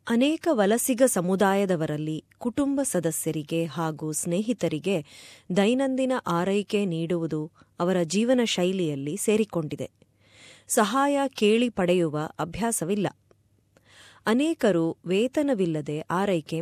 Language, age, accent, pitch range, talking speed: Kannada, 20-39, native, 160-225 Hz, 75 wpm